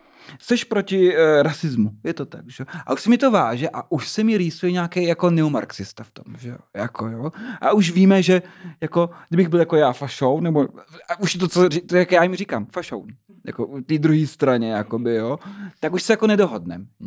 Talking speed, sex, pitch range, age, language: 205 wpm, male, 135-195 Hz, 30-49, Czech